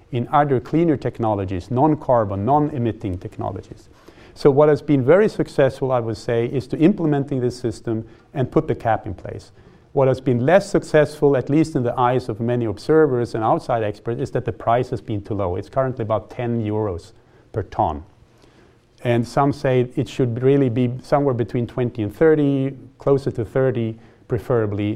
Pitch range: 115-140 Hz